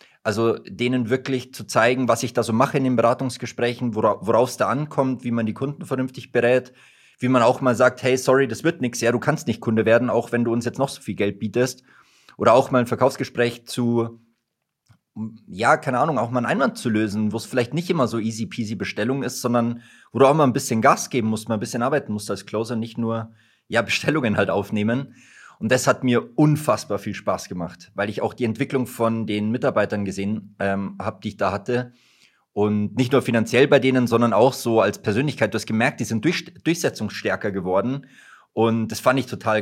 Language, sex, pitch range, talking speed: German, male, 110-130 Hz, 220 wpm